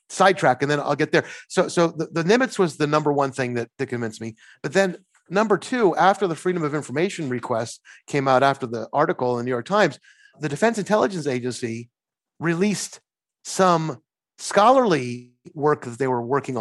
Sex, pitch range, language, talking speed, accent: male, 130-190 Hz, English, 190 wpm, American